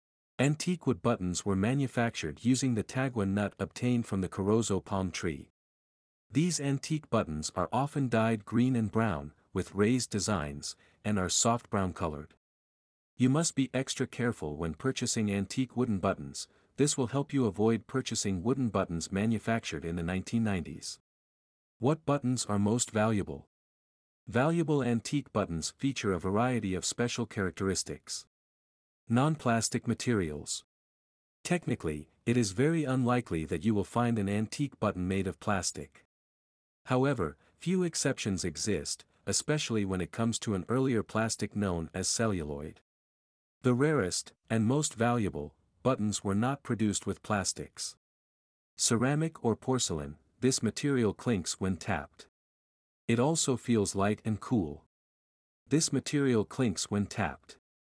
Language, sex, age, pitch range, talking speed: English, male, 50-69, 95-125 Hz, 135 wpm